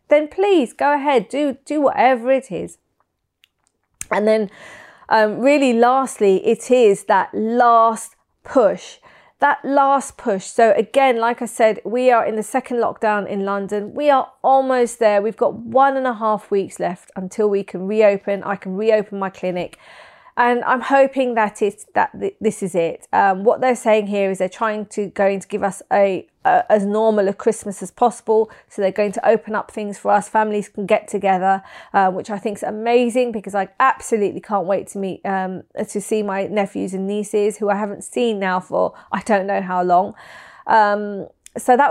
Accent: British